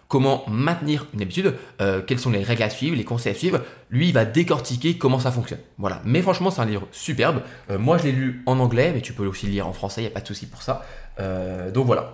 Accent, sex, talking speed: French, male, 270 wpm